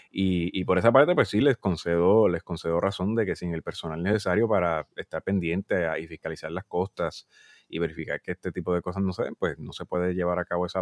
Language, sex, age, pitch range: Spanish, male, 30-49, 85-105 Hz